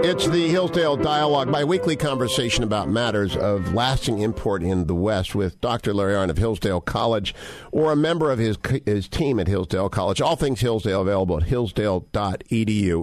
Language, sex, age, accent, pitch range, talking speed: English, male, 50-69, American, 100-130 Hz, 175 wpm